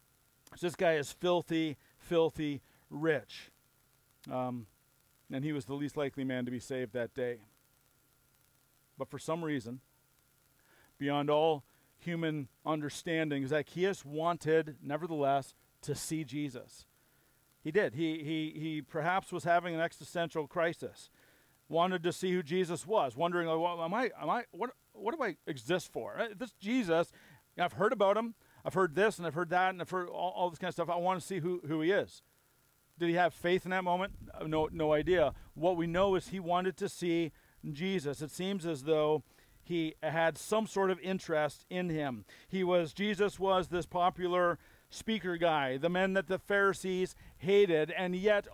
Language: English